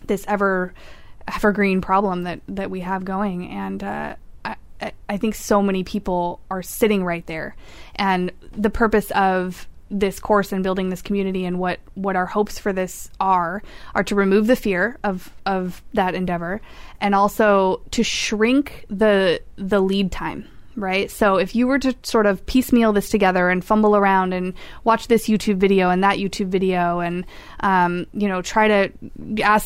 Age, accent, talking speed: 20-39, American, 175 wpm